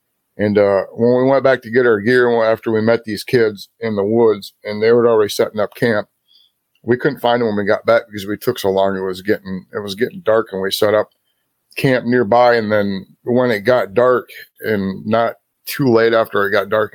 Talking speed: 230 wpm